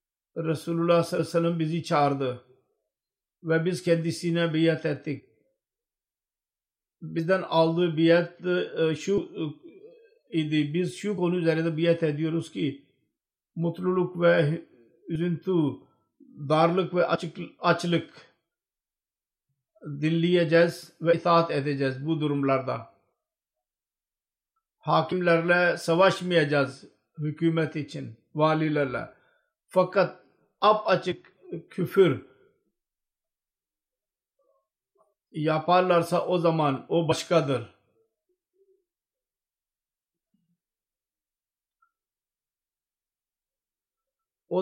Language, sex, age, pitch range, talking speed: Turkish, male, 50-69, 155-180 Hz, 75 wpm